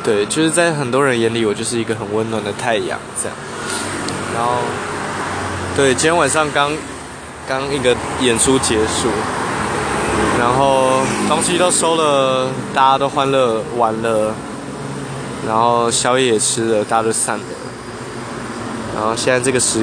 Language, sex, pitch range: Chinese, male, 110-135 Hz